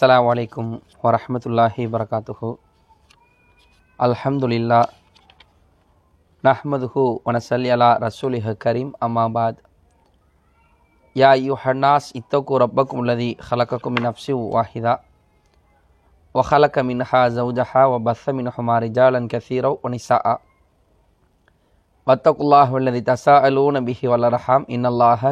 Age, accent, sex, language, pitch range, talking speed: 30-49, Indian, male, English, 90-135 Hz, 100 wpm